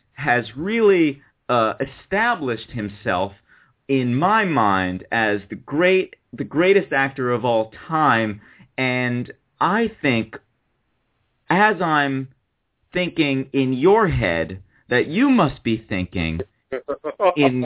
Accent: American